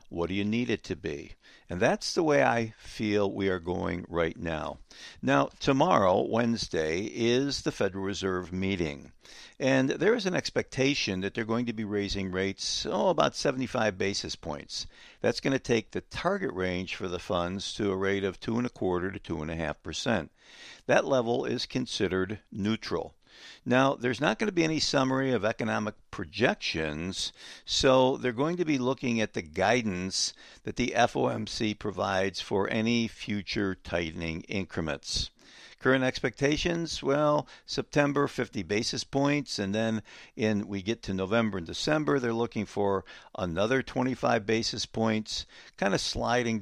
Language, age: English, 60-79